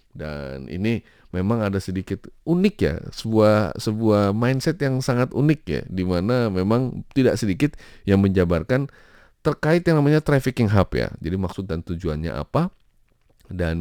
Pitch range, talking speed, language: 85-110 Hz, 140 wpm, Indonesian